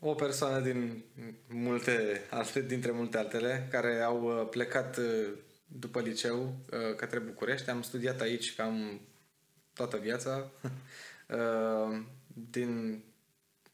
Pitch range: 110-135 Hz